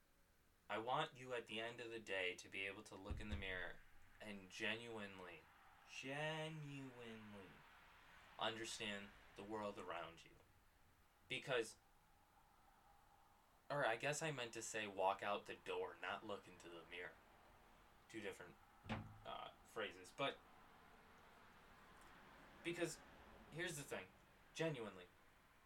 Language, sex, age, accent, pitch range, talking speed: English, male, 20-39, American, 95-145 Hz, 120 wpm